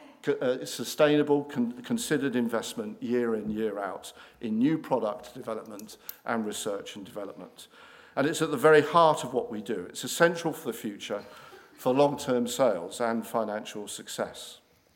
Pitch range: 115-150 Hz